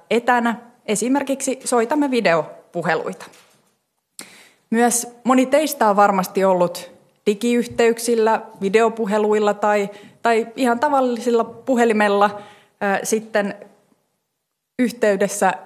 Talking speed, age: 75 wpm, 30-49